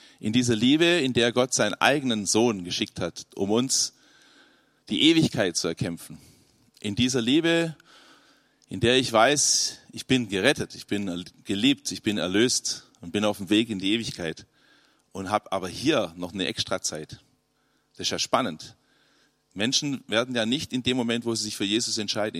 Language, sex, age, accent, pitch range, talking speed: German, male, 40-59, German, 100-130 Hz, 175 wpm